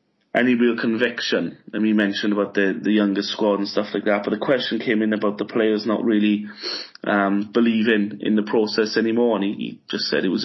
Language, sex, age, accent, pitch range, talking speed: English, male, 20-39, British, 105-175 Hz, 220 wpm